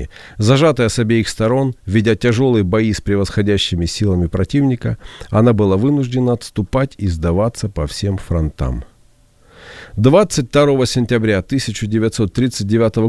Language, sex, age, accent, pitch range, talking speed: Ukrainian, male, 40-59, native, 100-135 Hz, 105 wpm